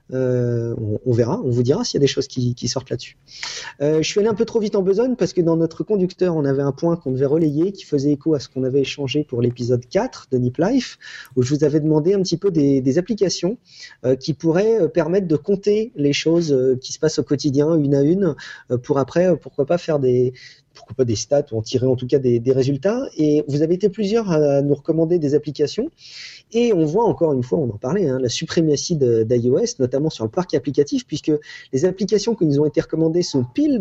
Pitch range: 130-175 Hz